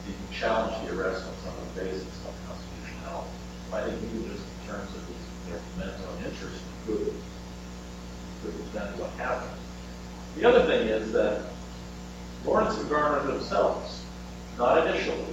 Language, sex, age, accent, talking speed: English, male, 50-69, American, 135 wpm